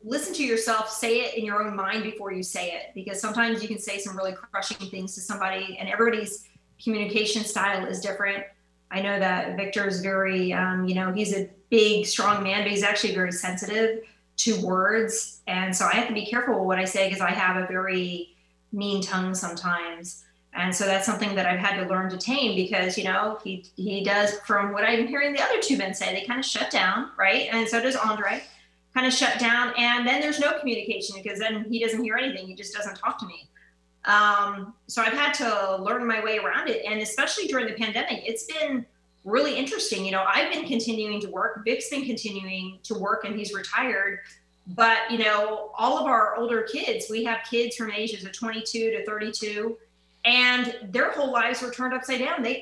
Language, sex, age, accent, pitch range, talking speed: English, female, 30-49, American, 195-230 Hz, 215 wpm